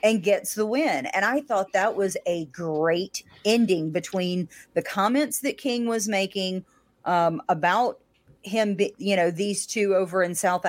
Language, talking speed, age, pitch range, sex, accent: English, 170 wpm, 30-49, 165-200 Hz, female, American